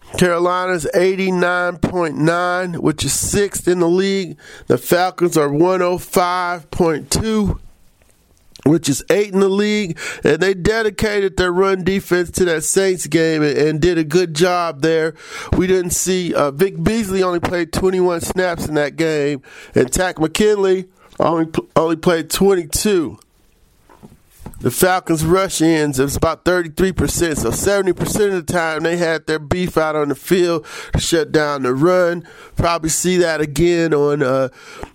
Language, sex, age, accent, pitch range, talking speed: English, male, 40-59, American, 155-185 Hz, 160 wpm